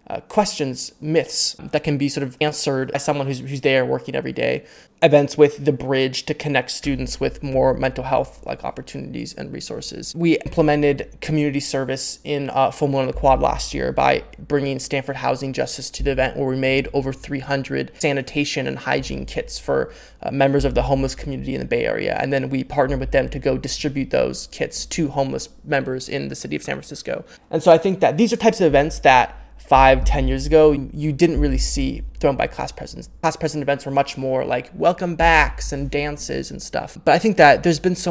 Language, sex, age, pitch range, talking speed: English, male, 20-39, 135-155 Hz, 215 wpm